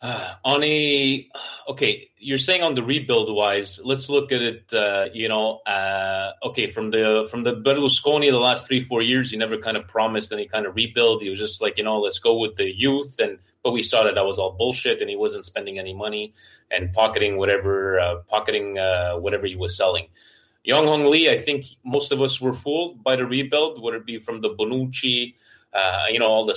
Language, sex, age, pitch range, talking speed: Italian, male, 30-49, 105-135 Hz, 220 wpm